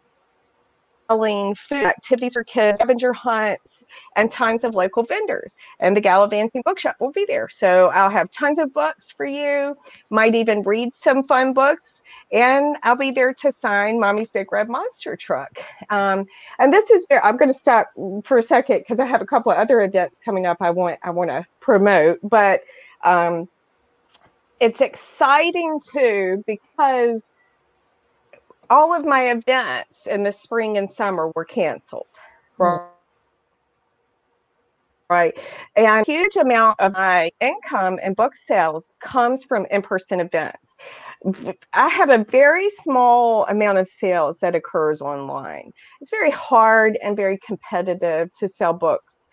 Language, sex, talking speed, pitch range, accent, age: English, female, 145 wpm, 190-265 Hz, American, 30-49